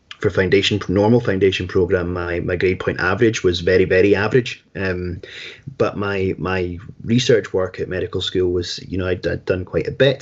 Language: English